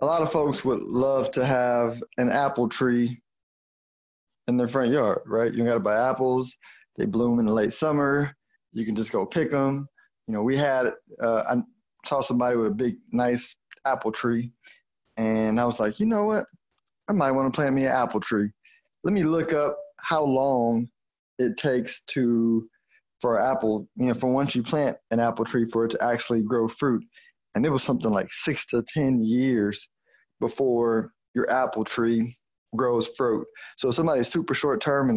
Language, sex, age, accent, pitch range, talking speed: English, male, 20-39, American, 115-135 Hz, 185 wpm